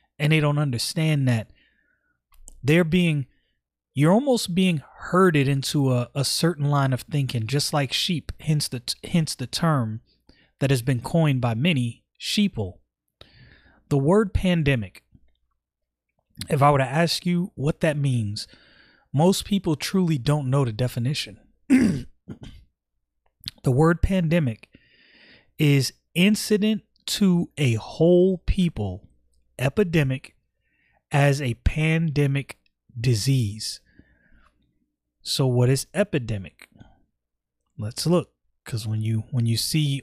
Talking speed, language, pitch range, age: 115 wpm, English, 115-155 Hz, 30-49